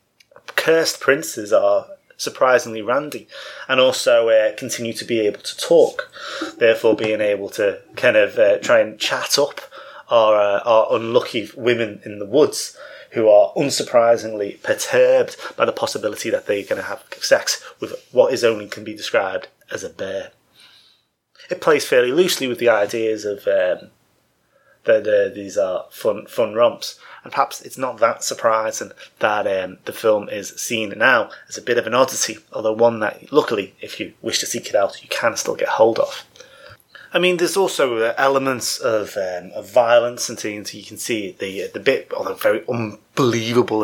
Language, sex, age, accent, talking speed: English, male, 30-49, British, 175 wpm